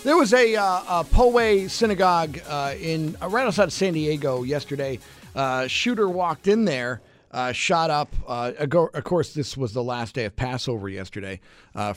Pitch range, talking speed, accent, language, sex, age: 120-175 Hz, 185 wpm, American, English, male, 40-59